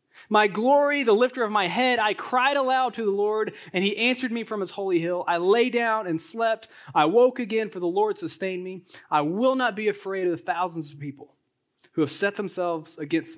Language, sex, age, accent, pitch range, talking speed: English, male, 20-39, American, 165-225 Hz, 220 wpm